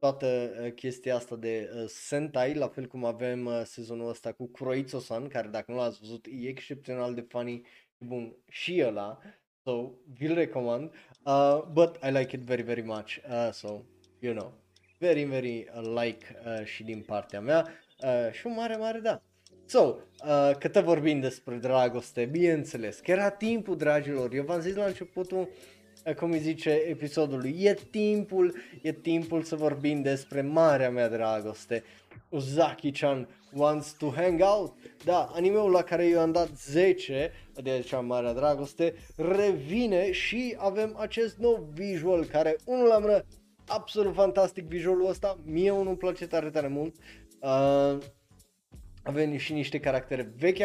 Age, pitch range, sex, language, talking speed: 20-39, 120-180 Hz, male, Romanian, 155 wpm